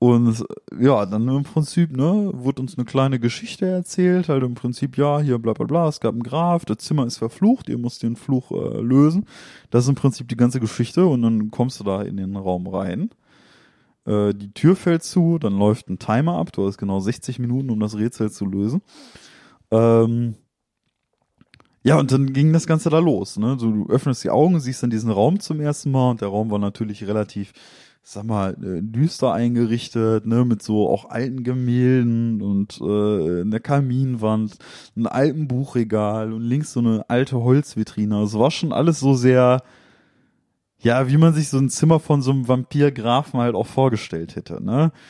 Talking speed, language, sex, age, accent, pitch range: 190 wpm, German, male, 20-39, German, 110-140 Hz